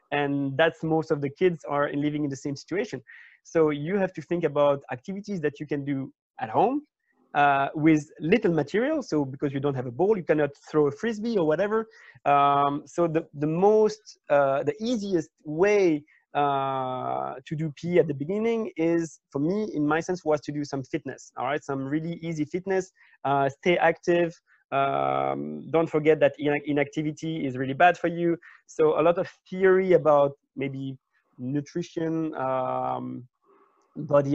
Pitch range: 135-165 Hz